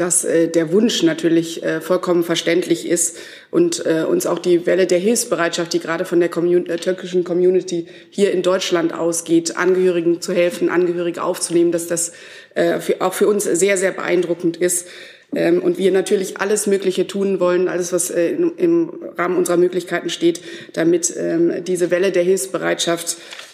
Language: German